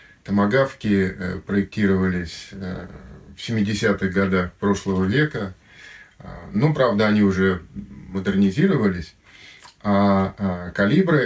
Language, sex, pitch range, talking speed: Russian, male, 95-115 Hz, 75 wpm